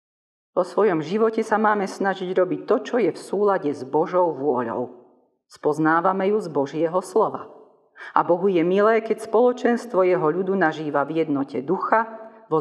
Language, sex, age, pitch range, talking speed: Slovak, female, 40-59, 155-220 Hz, 155 wpm